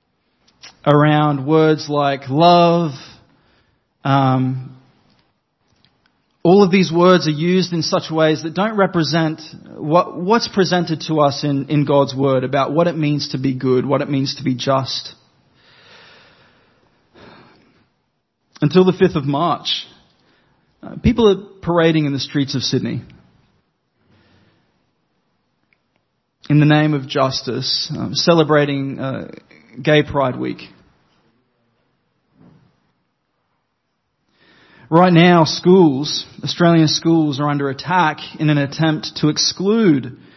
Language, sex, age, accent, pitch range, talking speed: English, male, 30-49, Australian, 135-170 Hz, 115 wpm